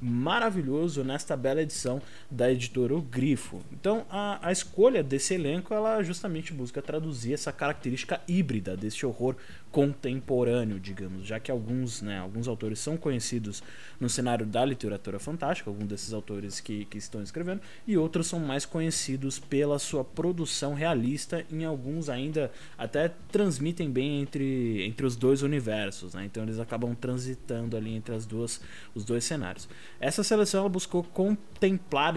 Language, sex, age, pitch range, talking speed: Portuguese, male, 20-39, 115-160 Hz, 155 wpm